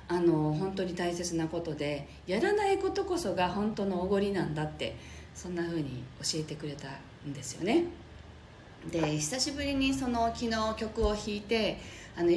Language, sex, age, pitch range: Japanese, female, 40-59, 160-245 Hz